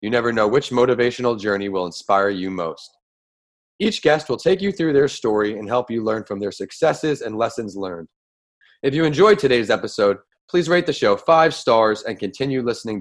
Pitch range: 110-145 Hz